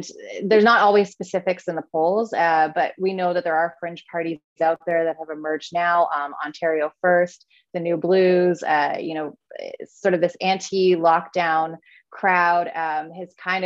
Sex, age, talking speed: female, 20-39, 175 wpm